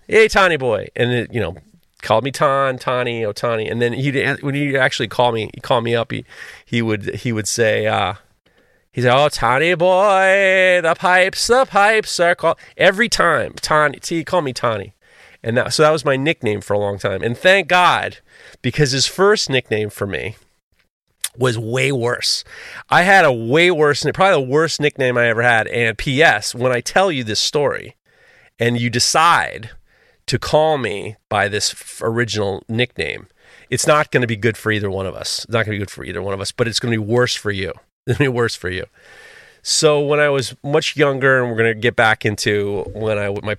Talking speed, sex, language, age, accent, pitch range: 210 wpm, male, English, 30-49, American, 110-150 Hz